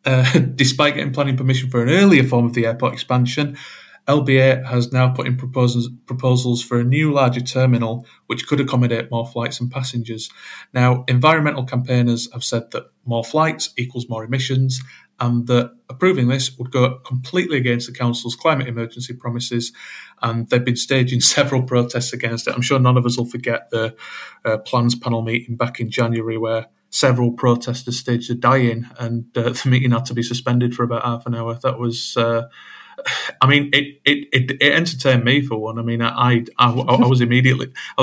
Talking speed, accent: 190 wpm, British